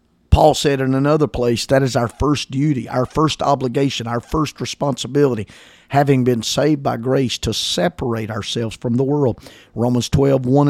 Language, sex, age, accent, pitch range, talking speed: English, male, 50-69, American, 115-145 Hz, 170 wpm